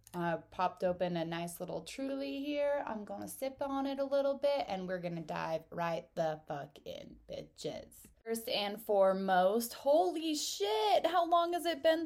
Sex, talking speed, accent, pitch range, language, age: female, 175 wpm, American, 180-275 Hz, English, 10-29